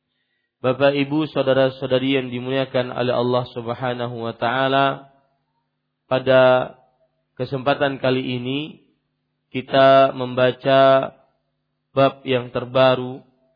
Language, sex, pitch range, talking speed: Malay, male, 125-135 Hz, 85 wpm